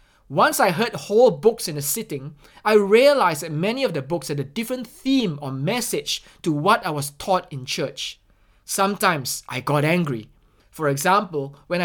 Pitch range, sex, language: 140-200 Hz, male, English